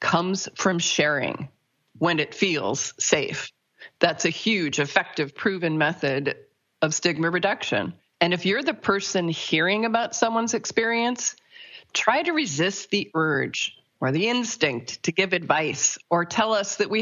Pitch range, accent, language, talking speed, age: 155-205 Hz, American, English, 145 wpm, 40-59